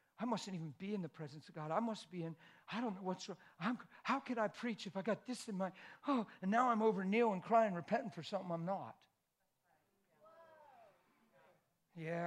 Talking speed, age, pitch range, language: 200 wpm, 60-79, 160-235 Hz, English